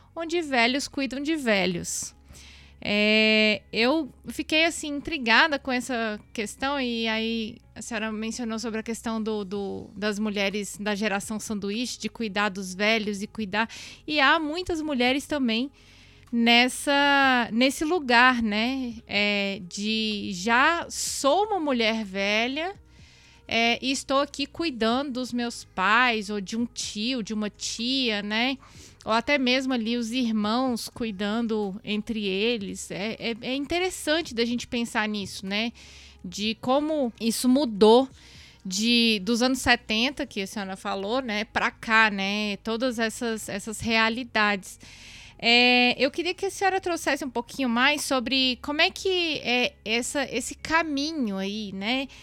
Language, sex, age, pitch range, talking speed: Portuguese, female, 20-39, 215-265 Hz, 140 wpm